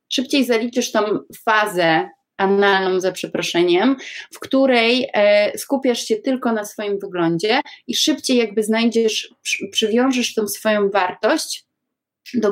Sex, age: female, 20-39